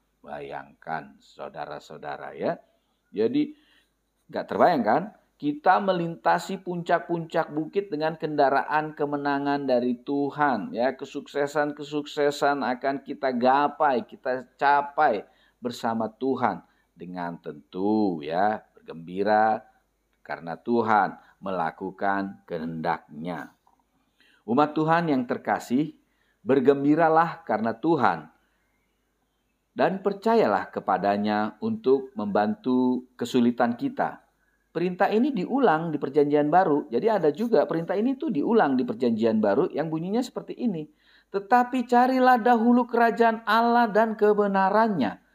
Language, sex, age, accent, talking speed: Indonesian, male, 50-69, native, 95 wpm